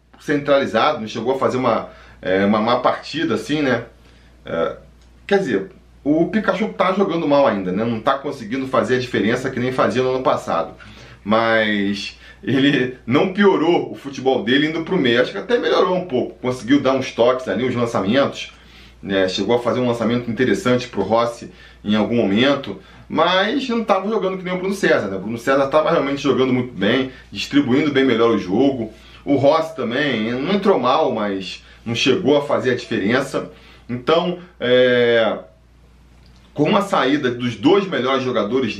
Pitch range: 110-150 Hz